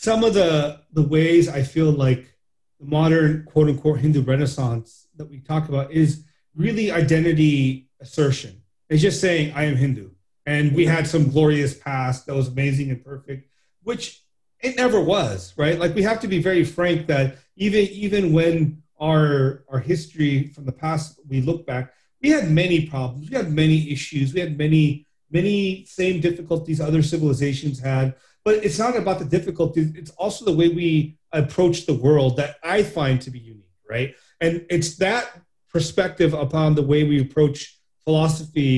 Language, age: English, 30-49